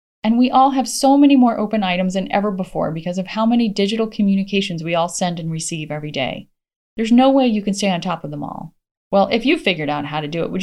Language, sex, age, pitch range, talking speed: English, female, 10-29, 180-240 Hz, 260 wpm